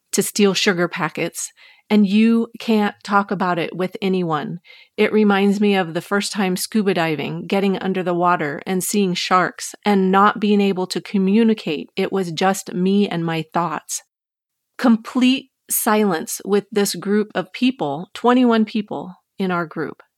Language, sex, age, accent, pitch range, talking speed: English, female, 30-49, American, 180-220 Hz, 160 wpm